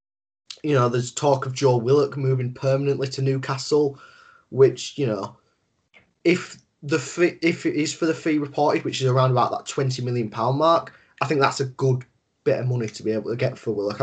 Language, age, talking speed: English, 10-29, 205 wpm